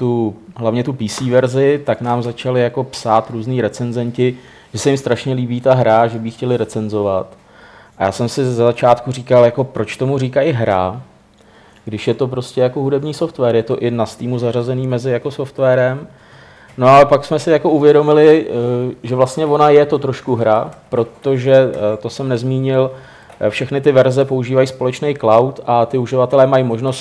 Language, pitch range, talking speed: Czech, 120-135 Hz, 180 wpm